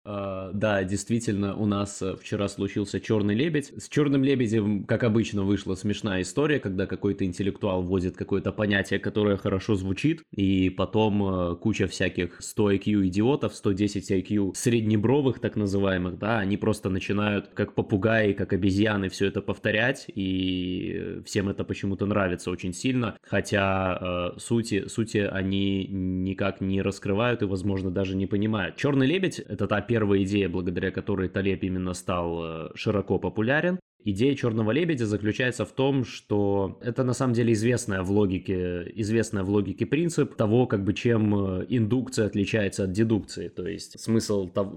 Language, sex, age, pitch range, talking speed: Russian, male, 20-39, 95-110 Hz, 155 wpm